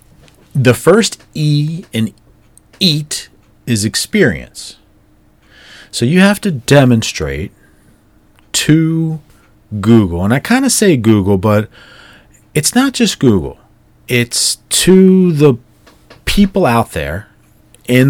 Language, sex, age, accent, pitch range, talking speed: English, male, 40-59, American, 95-135 Hz, 105 wpm